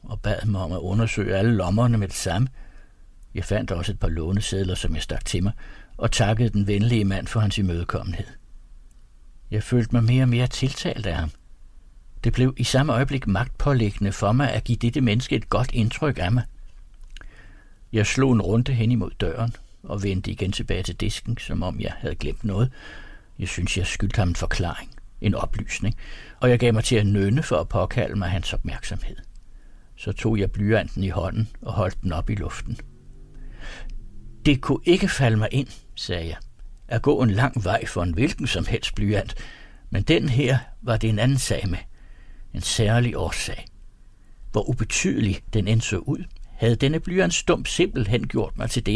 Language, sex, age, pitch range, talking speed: Danish, male, 60-79, 95-120 Hz, 190 wpm